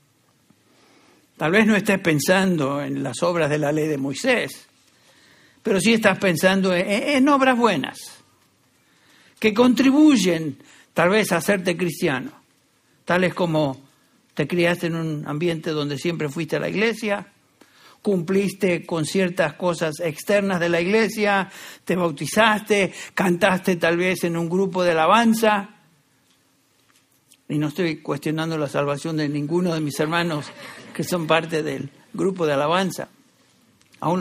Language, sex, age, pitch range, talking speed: English, male, 60-79, 155-195 Hz, 135 wpm